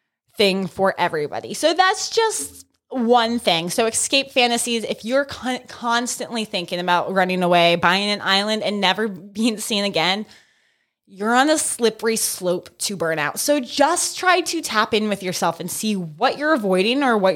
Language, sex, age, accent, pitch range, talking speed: English, female, 20-39, American, 200-310 Hz, 170 wpm